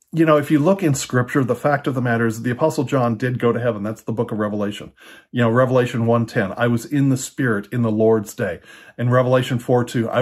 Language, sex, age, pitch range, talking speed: English, male, 40-59, 120-150 Hz, 240 wpm